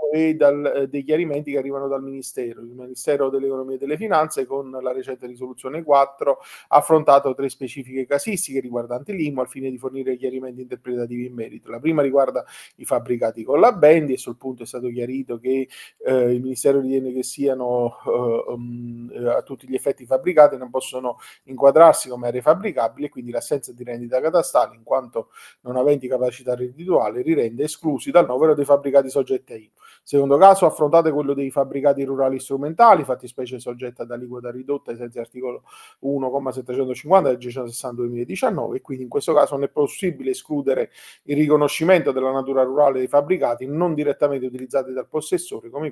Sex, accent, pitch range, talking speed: male, native, 125-145 Hz, 175 wpm